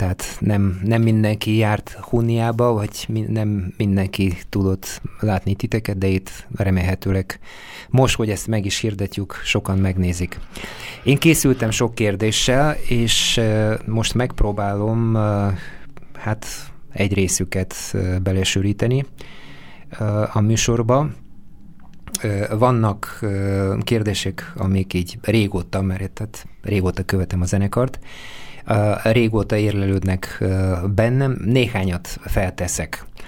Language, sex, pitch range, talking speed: Hungarian, male, 95-115 Hz, 95 wpm